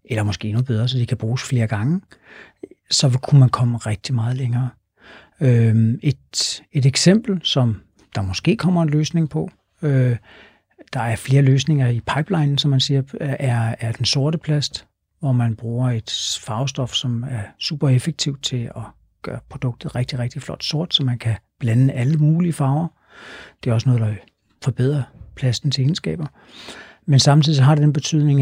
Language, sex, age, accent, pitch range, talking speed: Danish, male, 60-79, native, 120-145 Hz, 170 wpm